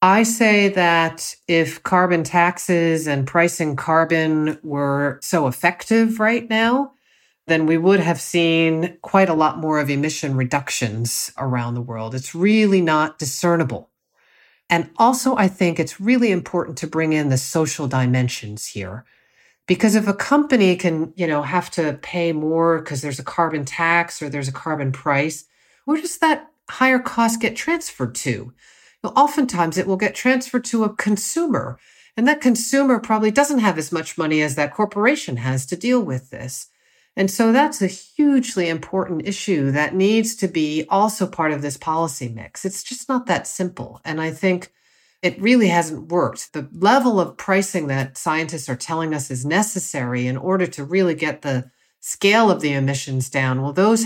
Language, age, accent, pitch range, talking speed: English, 50-69, American, 145-205 Hz, 170 wpm